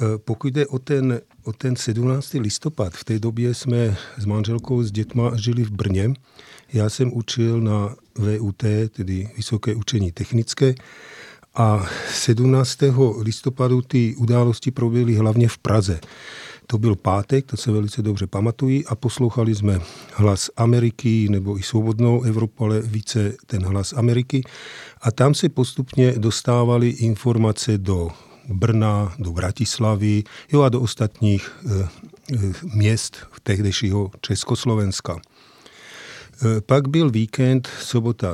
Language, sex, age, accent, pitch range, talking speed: Czech, male, 40-59, native, 105-120 Hz, 130 wpm